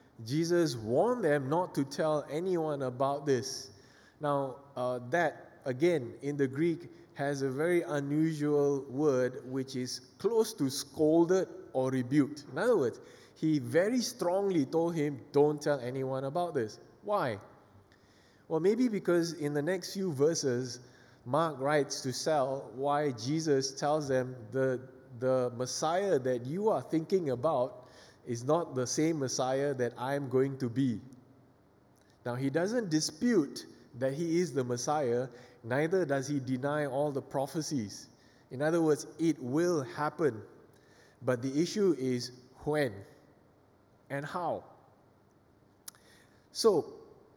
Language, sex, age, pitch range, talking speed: English, male, 20-39, 130-165 Hz, 135 wpm